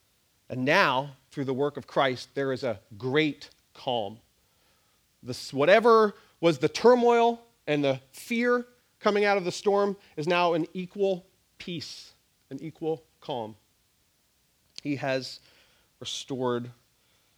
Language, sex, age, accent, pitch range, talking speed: English, male, 40-59, American, 125-165 Hz, 120 wpm